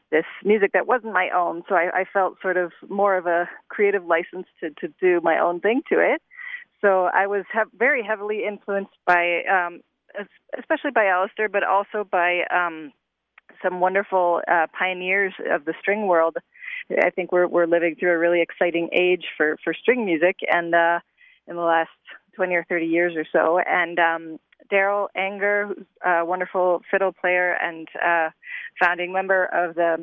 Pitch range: 170-195 Hz